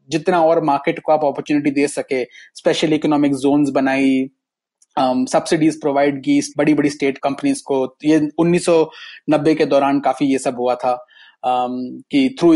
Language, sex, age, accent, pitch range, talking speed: Hindi, male, 30-49, native, 135-160 Hz, 155 wpm